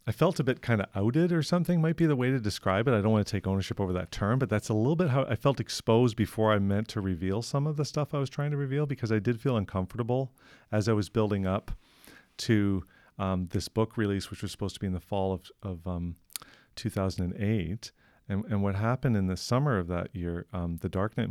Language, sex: English, male